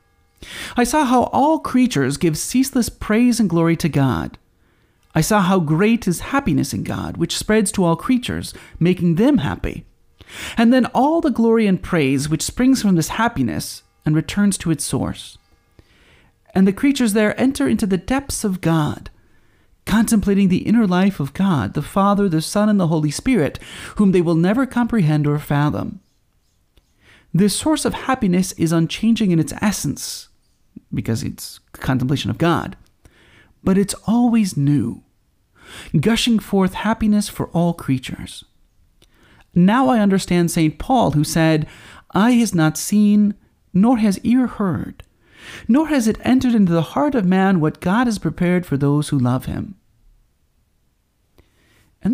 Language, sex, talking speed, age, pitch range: English, male, 155 wpm, 30-49, 150-225 Hz